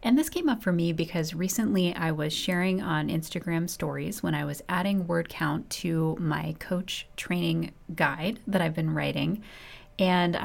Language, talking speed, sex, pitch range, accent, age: English, 170 wpm, female, 165-200 Hz, American, 30-49